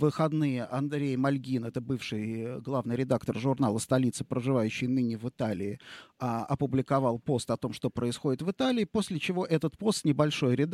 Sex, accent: male, native